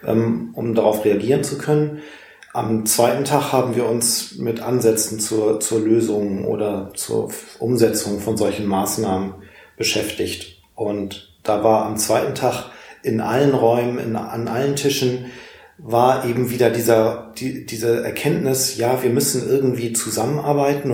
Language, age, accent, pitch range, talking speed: German, 40-59, German, 110-130 Hz, 130 wpm